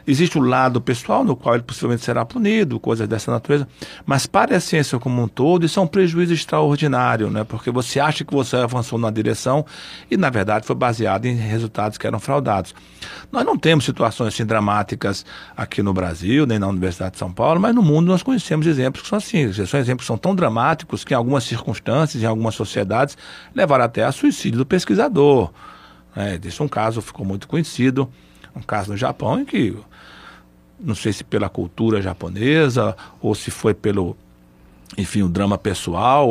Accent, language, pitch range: Brazilian, Portuguese, 110-170 Hz